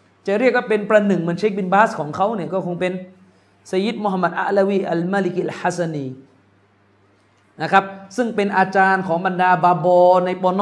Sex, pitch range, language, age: male, 160-205 Hz, Thai, 30-49